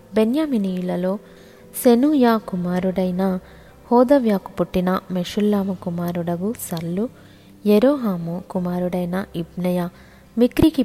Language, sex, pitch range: Telugu, female, 180-210 Hz